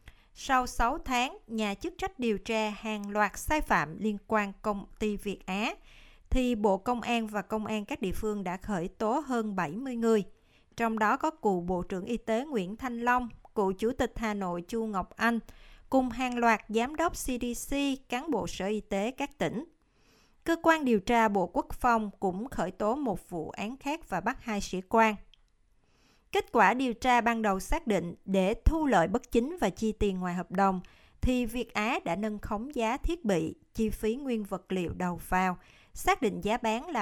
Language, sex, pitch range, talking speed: Vietnamese, female, 195-250 Hz, 205 wpm